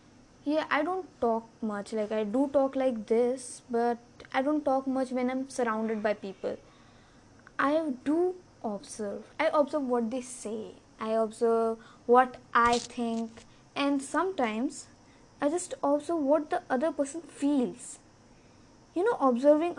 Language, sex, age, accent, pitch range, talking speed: English, female, 20-39, Indian, 230-290 Hz, 145 wpm